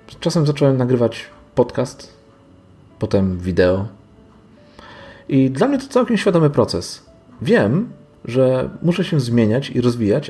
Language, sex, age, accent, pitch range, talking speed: Polish, male, 40-59, native, 100-135 Hz, 115 wpm